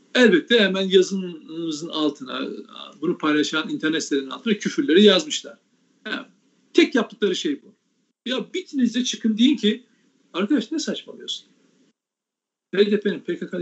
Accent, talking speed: native, 115 wpm